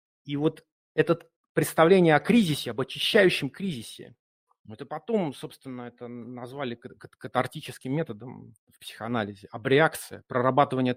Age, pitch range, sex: 40-59, 120-155 Hz, male